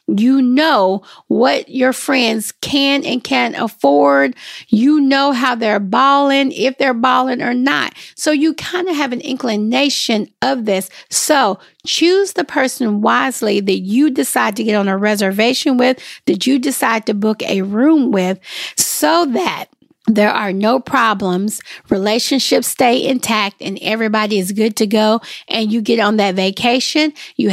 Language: English